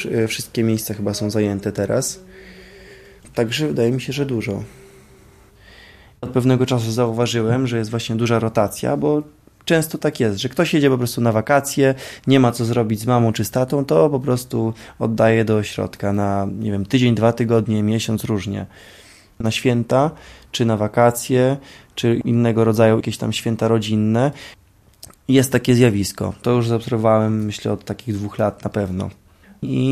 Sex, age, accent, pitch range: male, 20-39, native, 105-125 Hz